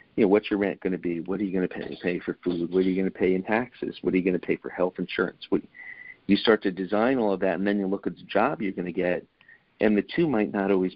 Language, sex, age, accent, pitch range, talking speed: English, male, 50-69, American, 90-105 Hz, 330 wpm